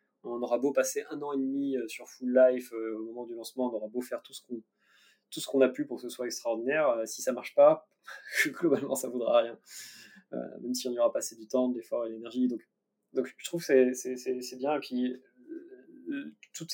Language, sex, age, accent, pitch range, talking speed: French, male, 20-39, French, 120-150 Hz, 255 wpm